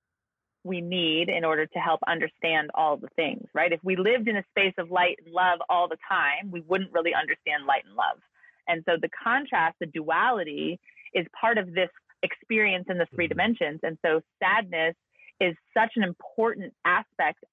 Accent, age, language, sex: American, 30-49, English, female